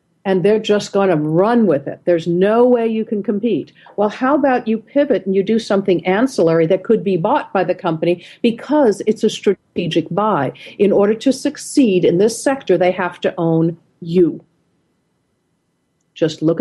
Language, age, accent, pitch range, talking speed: English, 50-69, American, 170-235 Hz, 180 wpm